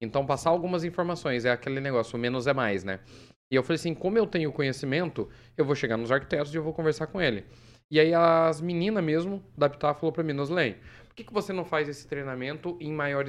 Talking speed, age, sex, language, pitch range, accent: 240 wpm, 20-39, male, Portuguese, 120-165 Hz, Brazilian